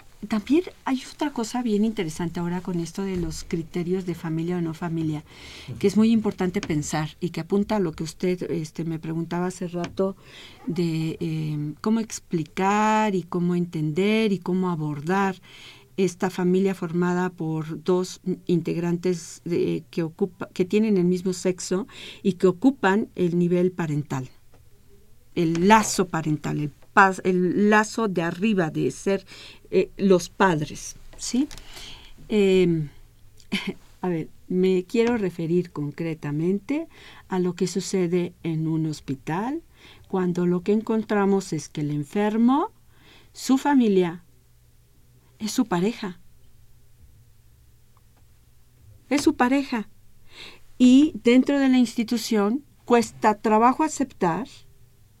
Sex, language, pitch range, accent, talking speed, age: female, Spanish, 160-210 Hz, Mexican, 125 wpm, 50-69